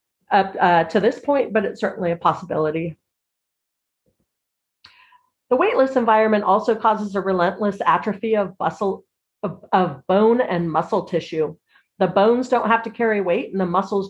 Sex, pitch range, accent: female, 180-240 Hz, American